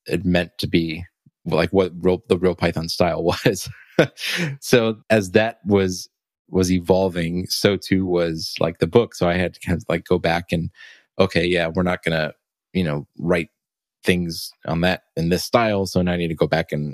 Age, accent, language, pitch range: 20-39, American, English, 85-95 Hz